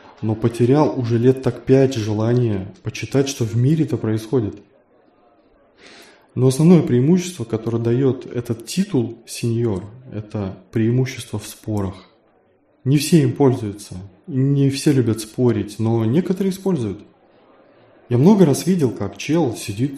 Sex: male